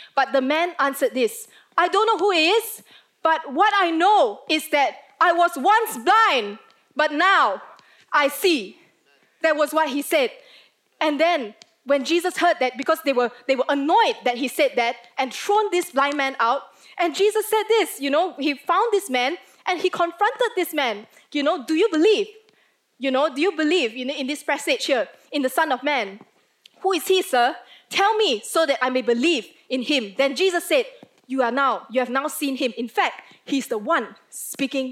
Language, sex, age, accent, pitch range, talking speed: English, female, 20-39, Malaysian, 270-390 Hz, 200 wpm